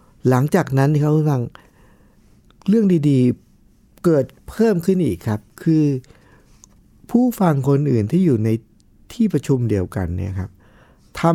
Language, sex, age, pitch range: Thai, male, 60-79, 110-165 Hz